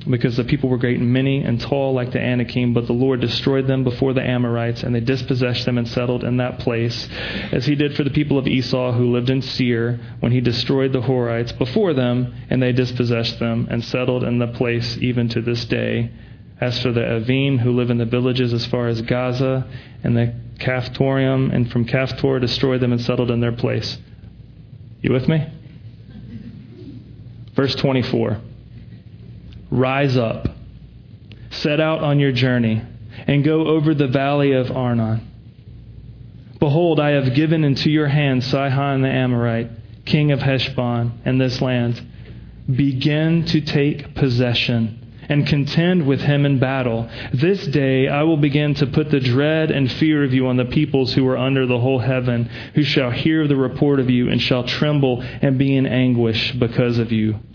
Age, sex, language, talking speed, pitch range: 30-49, male, English, 180 wpm, 120-140 Hz